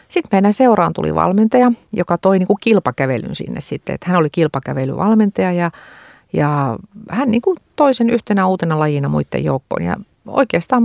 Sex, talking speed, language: female, 155 wpm, Finnish